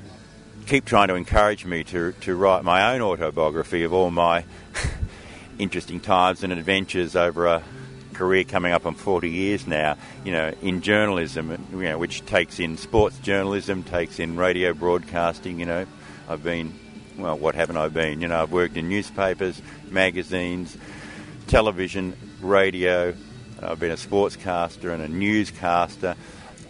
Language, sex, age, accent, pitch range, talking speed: English, male, 50-69, Australian, 85-100 Hz, 150 wpm